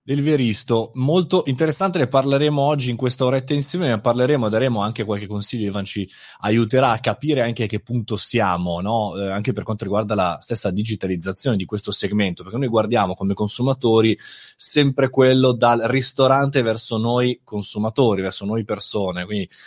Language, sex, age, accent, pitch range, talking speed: Italian, male, 20-39, native, 100-130 Hz, 170 wpm